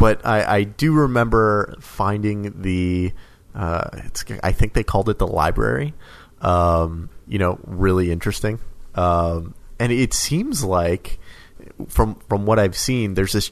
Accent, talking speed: American, 145 wpm